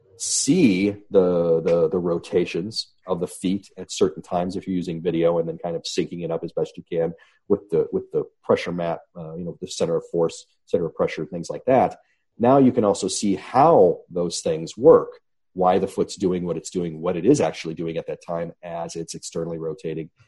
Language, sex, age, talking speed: English, male, 40-59, 215 wpm